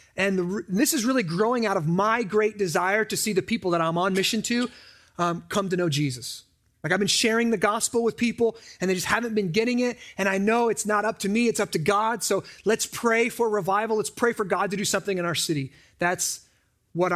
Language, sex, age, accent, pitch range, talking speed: English, male, 30-49, American, 175-240 Hz, 240 wpm